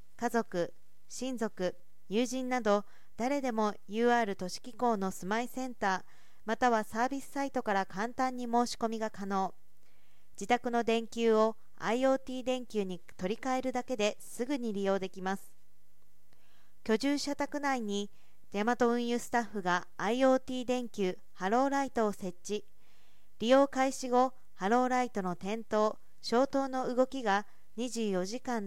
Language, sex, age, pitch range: Japanese, female, 40-59, 205-255 Hz